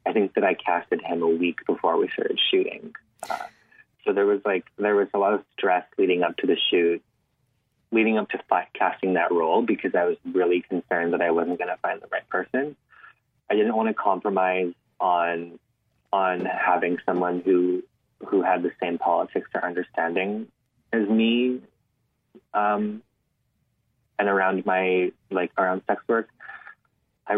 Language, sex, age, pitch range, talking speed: English, male, 20-39, 90-115 Hz, 165 wpm